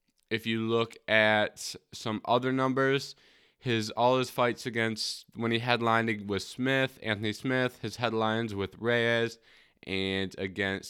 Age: 20-39